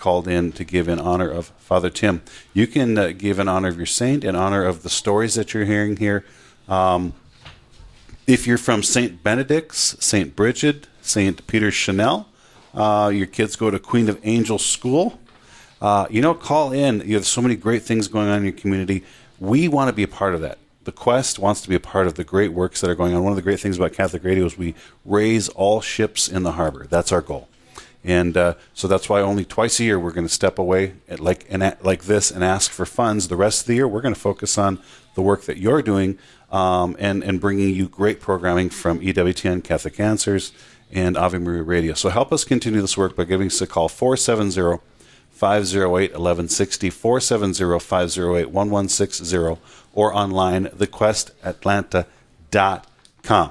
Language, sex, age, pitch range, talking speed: English, male, 40-59, 90-110 Hz, 195 wpm